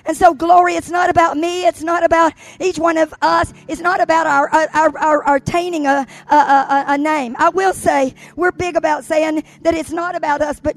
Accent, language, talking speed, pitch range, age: American, English, 225 wpm, 270-320 Hz, 50-69